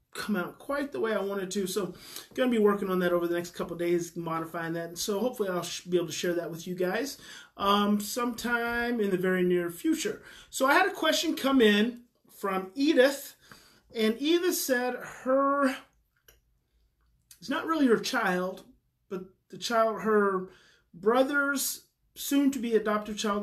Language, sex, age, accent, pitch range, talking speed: English, male, 30-49, American, 180-265 Hz, 175 wpm